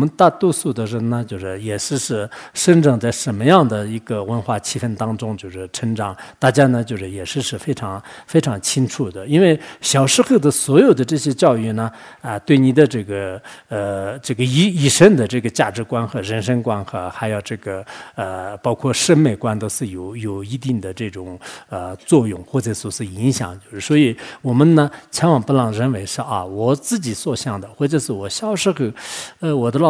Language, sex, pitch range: English, male, 105-140 Hz